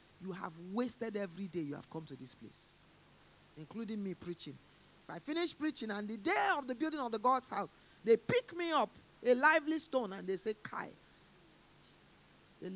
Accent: Nigerian